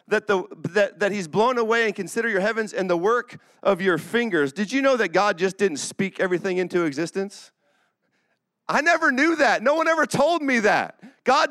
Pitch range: 205-260 Hz